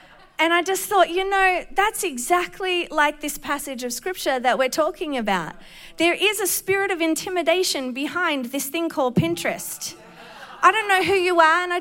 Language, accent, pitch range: English, Australian, 225-335 Hz